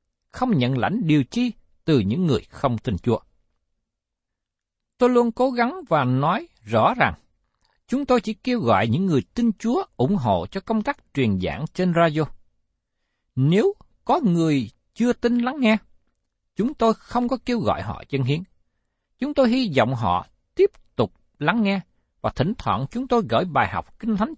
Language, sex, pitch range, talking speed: Vietnamese, male, 150-245 Hz, 175 wpm